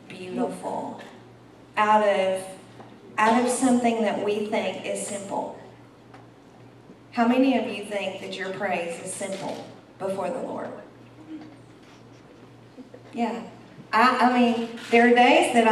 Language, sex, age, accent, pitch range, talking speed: English, female, 40-59, American, 190-230 Hz, 120 wpm